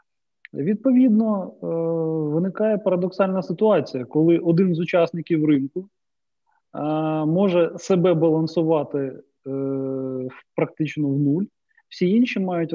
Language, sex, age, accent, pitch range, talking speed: Ukrainian, male, 30-49, native, 140-195 Hz, 85 wpm